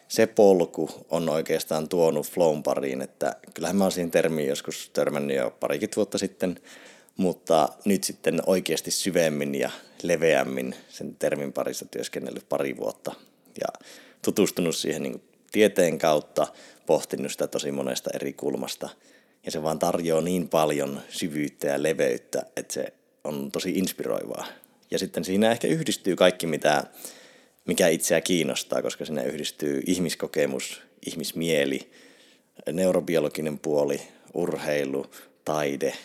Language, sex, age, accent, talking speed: Finnish, male, 30-49, native, 125 wpm